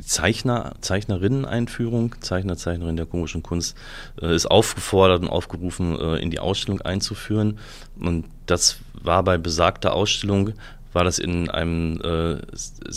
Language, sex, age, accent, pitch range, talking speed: German, male, 30-49, German, 90-115 Hz, 130 wpm